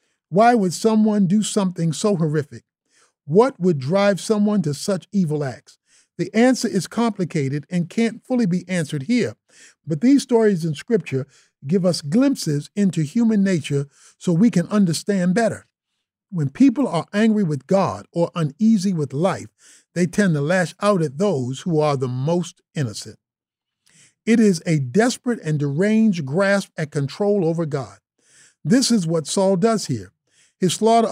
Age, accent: 50-69, American